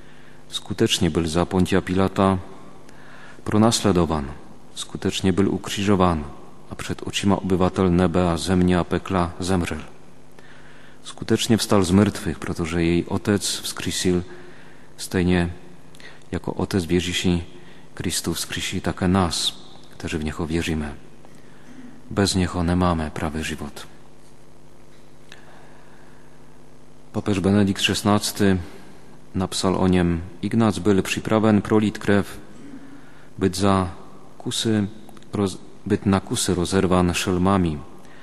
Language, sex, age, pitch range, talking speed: Slovak, male, 40-59, 85-100 Hz, 95 wpm